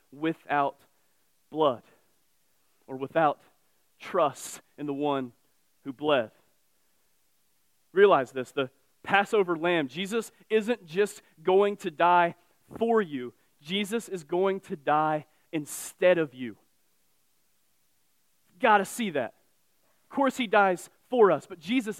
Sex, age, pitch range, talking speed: male, 30-49, 145-215 Hz, 115 wpm